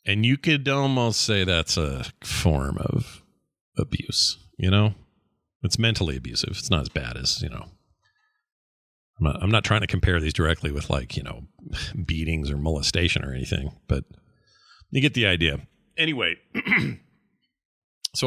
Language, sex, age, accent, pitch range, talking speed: English, male, 40-59, American, 90-115 Hz, 155 wpm